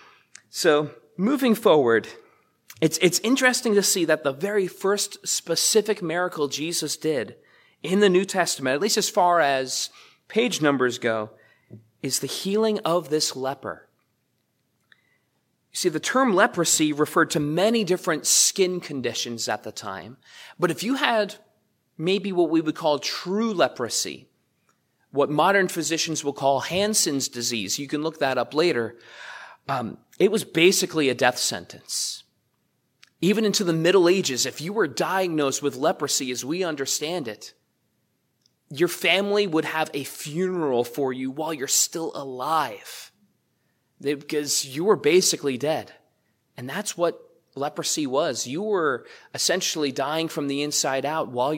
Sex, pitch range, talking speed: male, 135-190 Hz, 145 wpm